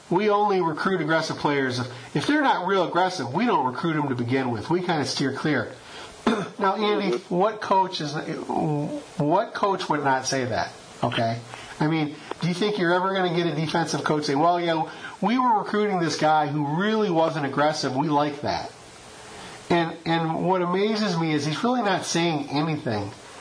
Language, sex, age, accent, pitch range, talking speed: English, male, 40-59, American, 140-180 Hz, 190 wpm